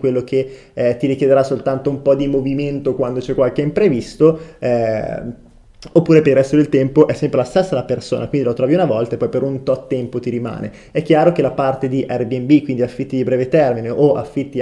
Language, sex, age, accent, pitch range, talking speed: Italian, male, 20-39, native, 130-155 Hz, 220 wpm